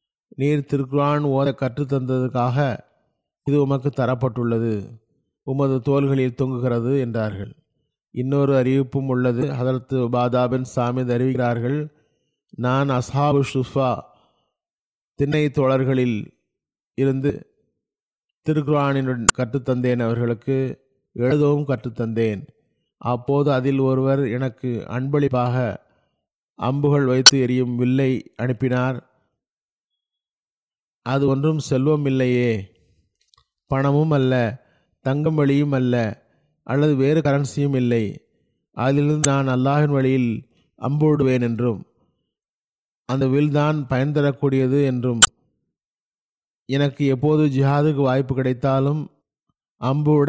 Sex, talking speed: male, 85 wpm